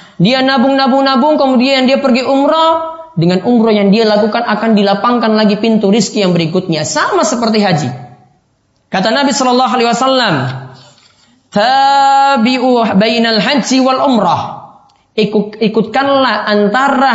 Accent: native